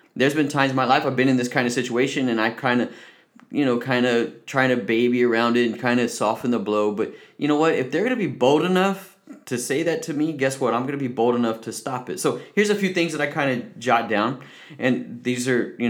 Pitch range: 115-135 Hz